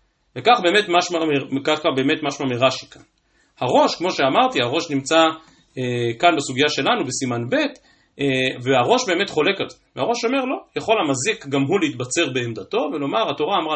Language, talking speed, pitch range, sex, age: Hebrew, 155 wpm, 130-190 Hz, male, 30-49